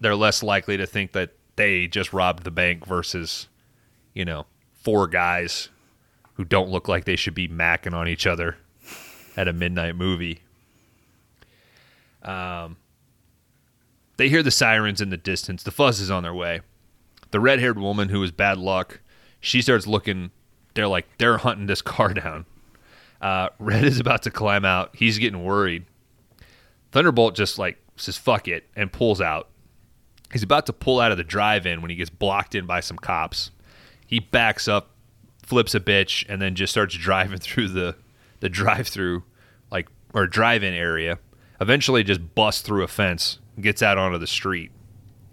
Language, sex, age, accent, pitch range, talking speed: English, male, 30-49, American, 95-115 Hz, 170 wpm